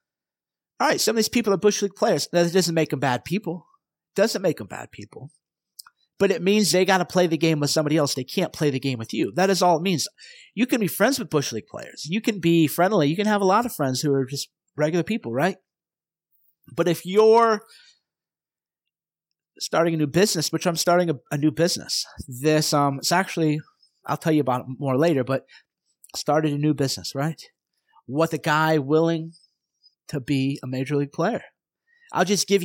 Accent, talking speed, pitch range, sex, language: American, 215 wpm, 150-190 Hz, male, English